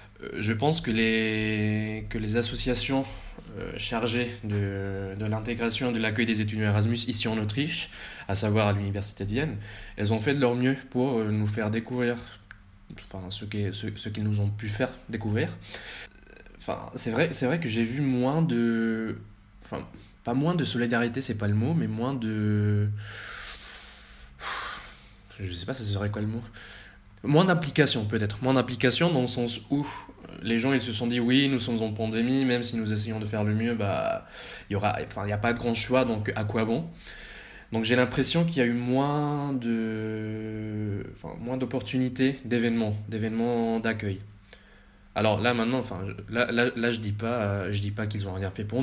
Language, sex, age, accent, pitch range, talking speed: French, male, 20-39, French, 105-120 Hz, 190 wpm